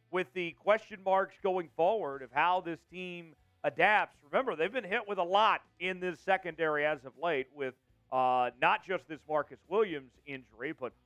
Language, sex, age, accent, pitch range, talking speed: English, male, 40-59, American, 145-190 Hz, 180 wpm